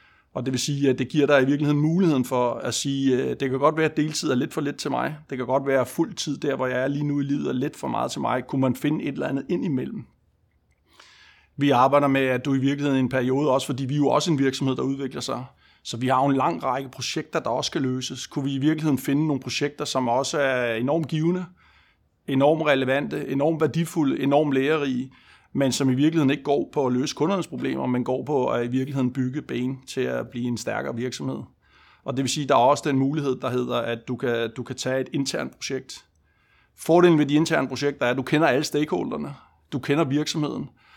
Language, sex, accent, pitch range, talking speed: Danish, male, native, 130-150 Hz, 245 wpm